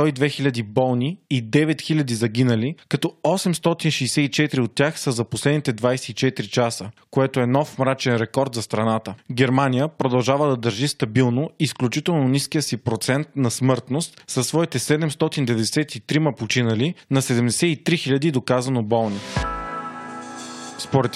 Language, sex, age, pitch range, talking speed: Bulgarian, male, 20-39, 120-145 Hz, 120 wpm